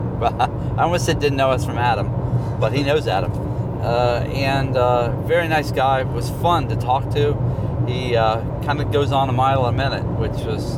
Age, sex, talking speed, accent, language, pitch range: 40-59, male, 200 wpm, American, English, 115-130 Hz